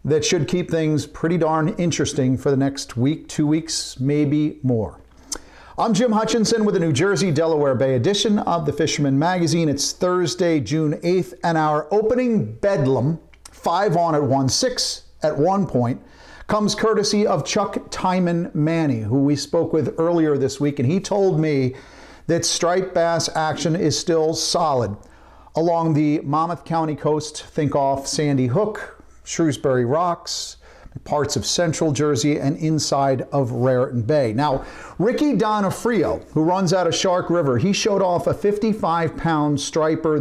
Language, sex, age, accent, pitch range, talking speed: English, male, 50-69, American, 145-185 Hz, 155 wpm